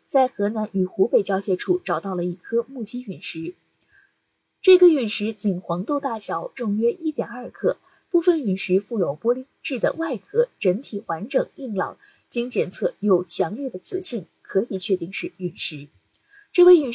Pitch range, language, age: 195-275 Hz, Chinese, 20-39